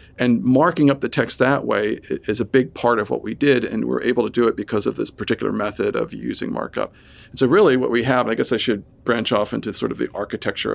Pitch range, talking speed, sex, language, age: 110-135 Hz, 260 wpm, male, English, 50-69